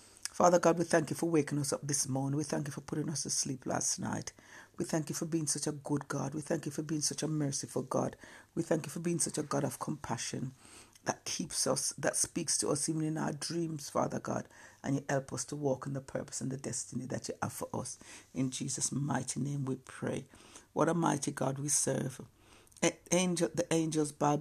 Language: English